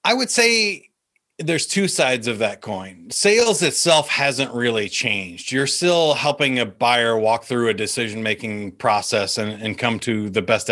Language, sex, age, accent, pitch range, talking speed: English, male, 30-49, American, 115-155 Hz, 170 wpm